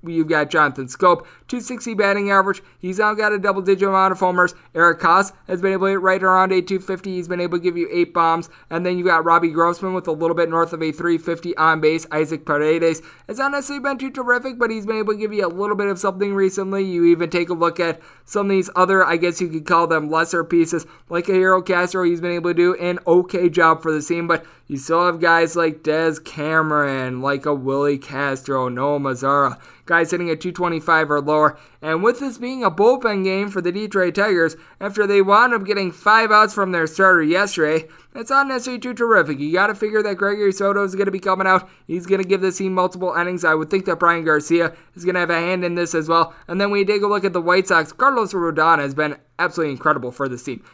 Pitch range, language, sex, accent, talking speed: 165-195 Hz, English, male, American, 245 wpm